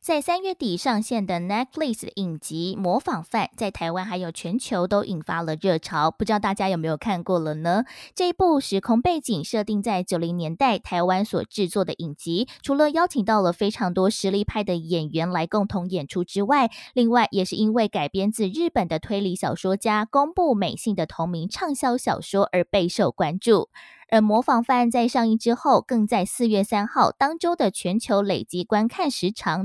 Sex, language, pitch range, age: female, Chinese, 180-250 Hz, 20-39